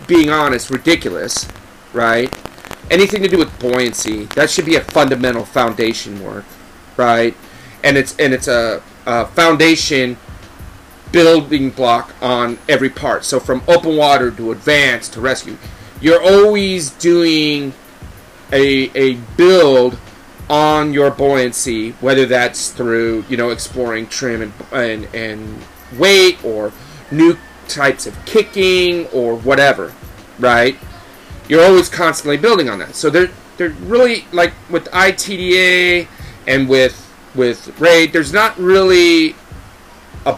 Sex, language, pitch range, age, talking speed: male, English, 120-165 Hz, 40-59, 125 wpm